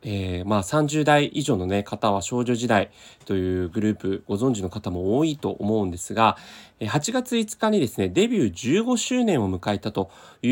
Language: Japanese